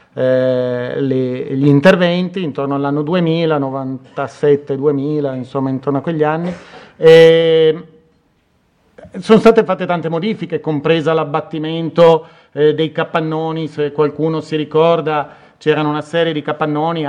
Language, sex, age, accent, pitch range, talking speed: Italian, male, 40-59, native, 150-220 Hz, 110 wpm